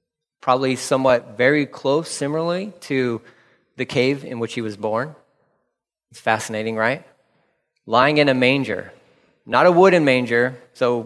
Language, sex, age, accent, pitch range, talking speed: English, male, 30-49, American, 125-170 Hz, 135 wpm